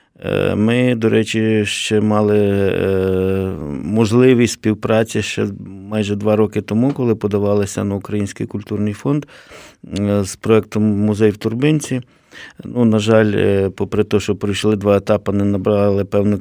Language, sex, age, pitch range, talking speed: Ukrainian, male, 50-69, 100-115 Hz, 130 wpm